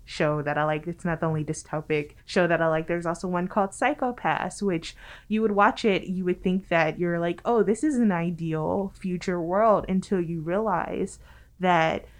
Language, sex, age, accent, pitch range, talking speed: English, female, 20-39, American, 165-205 Hz, 195 wpm